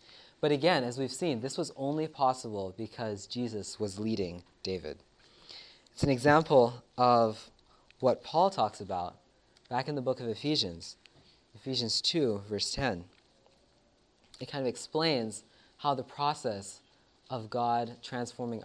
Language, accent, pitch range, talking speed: English, American, 110-140 Hz, 135 wpm